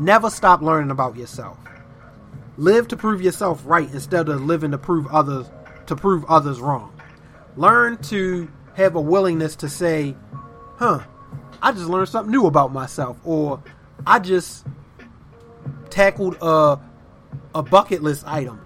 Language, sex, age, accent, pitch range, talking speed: English, male, 30-49, American, 140-180 Hz, 140 wpm